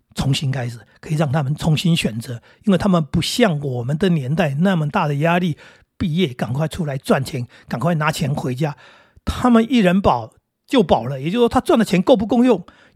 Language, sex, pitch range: Chinese, male, 155-210 Hz